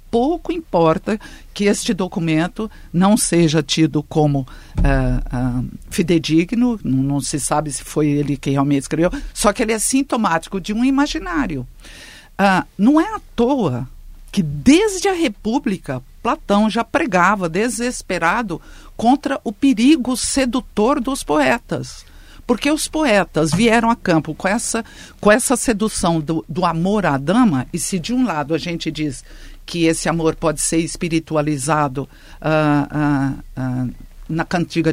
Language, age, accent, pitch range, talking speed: Portuguese, 50-69, Brazilian, 155-245 Hz, 135 wpm